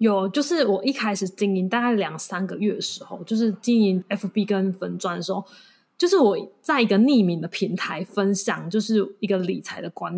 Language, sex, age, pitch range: Chinese, female, 20-39, 190-245 Hz